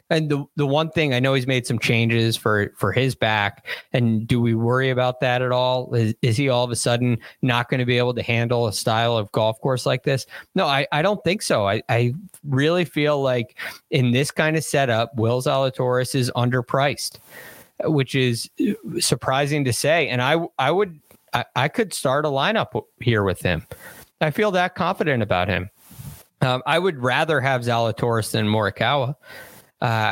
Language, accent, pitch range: English, American, 115-145 Hz